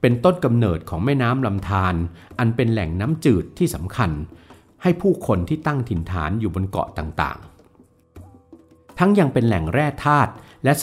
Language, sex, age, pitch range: Thai, male, 60-79, 90-130 Hz